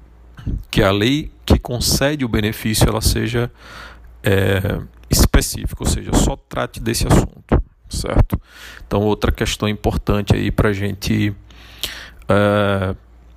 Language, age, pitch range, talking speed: Portuguese, 40-59, 90-120 Hz, 115 wpm